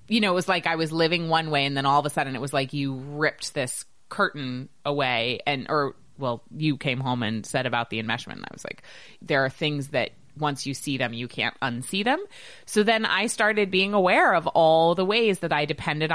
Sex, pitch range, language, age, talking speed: female, 155-220 Hz, English, 20-39, 235 wpm